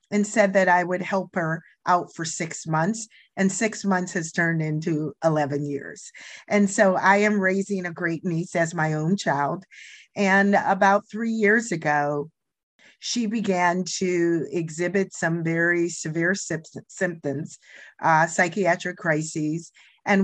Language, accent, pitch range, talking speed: English, American, 160-195 Hz, 140 wpm